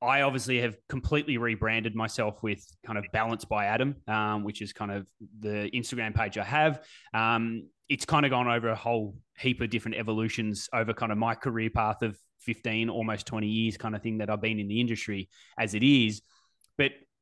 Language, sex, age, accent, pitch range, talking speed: English, male, 20-39, Australian, 110-135 Hz, 200 wpm